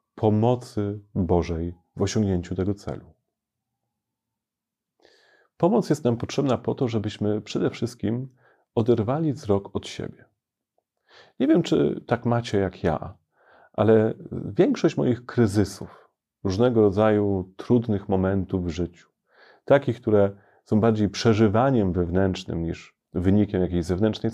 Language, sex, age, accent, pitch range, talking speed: Polish, male, 30-49, native, 95-120 Hz, 115 wpm